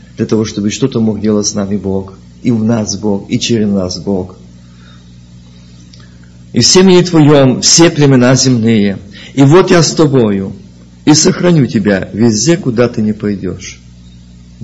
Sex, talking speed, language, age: male, 150 wpm, Russian, 50-69